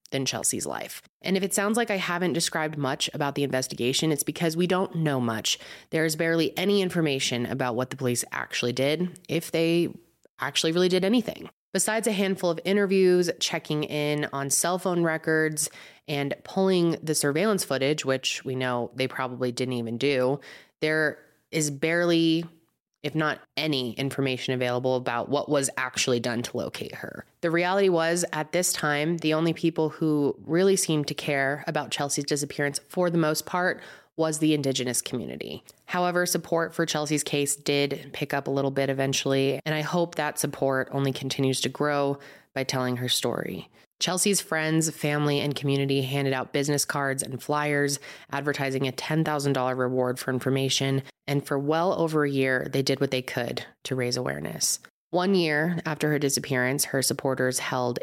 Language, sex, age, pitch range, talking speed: English, female, 20-39, 130-160 Hz, 170 wpm